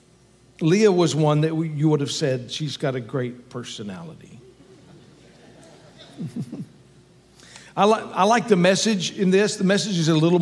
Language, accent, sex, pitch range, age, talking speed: English, American, male, 145-180 Hz, 60-79, 150 wpm